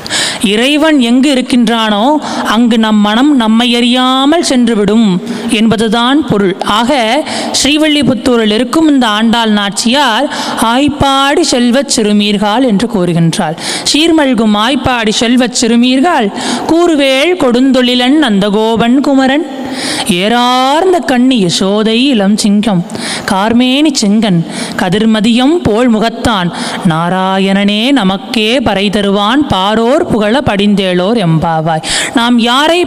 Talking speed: 90 wpm